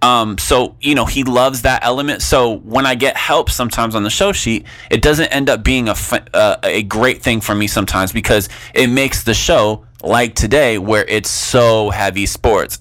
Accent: American